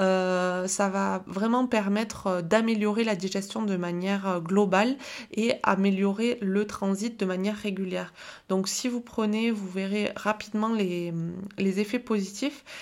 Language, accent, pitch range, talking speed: French, French, 195-230 Hz, 135 wpm